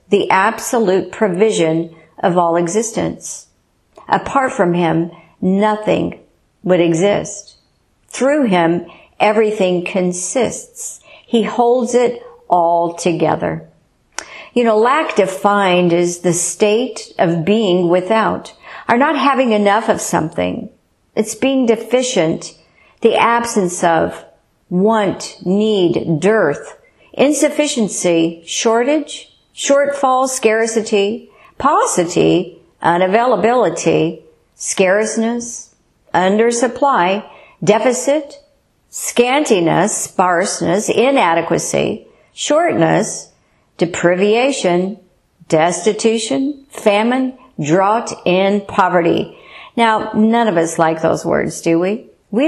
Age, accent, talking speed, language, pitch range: 50-69, American, 85 wpm, English, 180-235 Hz